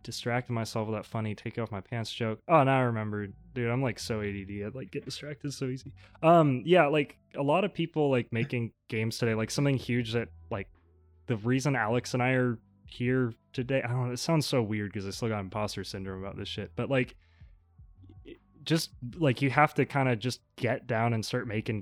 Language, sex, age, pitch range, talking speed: English, male, 20-39, 100-120 Hz, 220 wpm